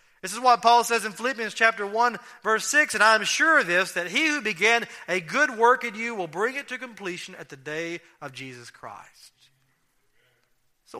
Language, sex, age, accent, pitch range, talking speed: English, male, 40-59, American, 145-235 Hz, 205 wpm